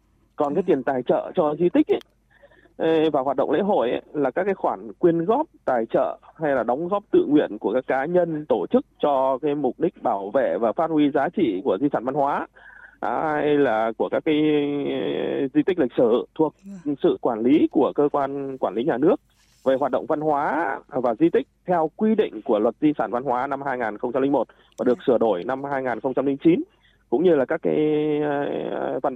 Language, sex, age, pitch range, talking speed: Vietnamese, male, 20-39, 140-200 Hz, 205 wpm